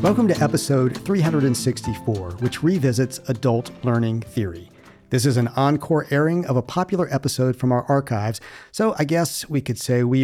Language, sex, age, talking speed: English, male, 50-69, 165 wpm